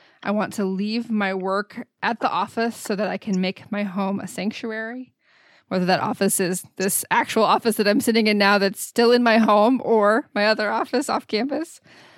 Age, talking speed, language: 20-39, 200 wpm, English